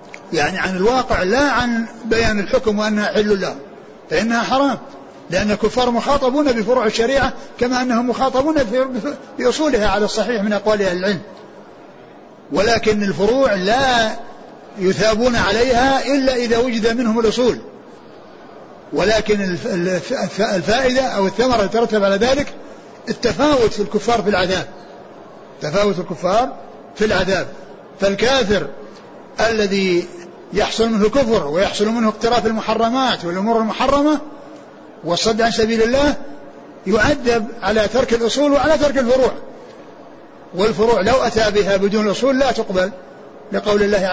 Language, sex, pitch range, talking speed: Arabic, male, 195-245 Hz, 115 wpm